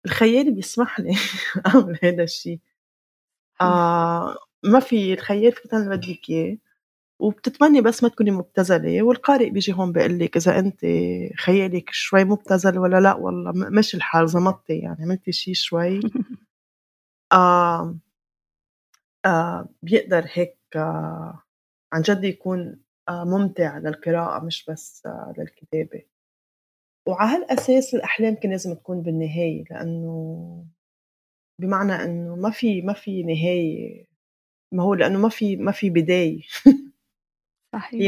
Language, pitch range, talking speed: Arabic, 170-215 Hz, 125 wpm